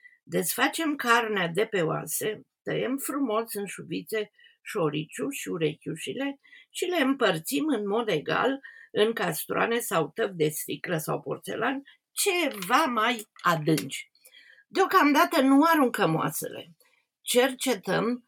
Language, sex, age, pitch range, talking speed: Romanian, female, 50-69, 195-310 Hz, 110 wpm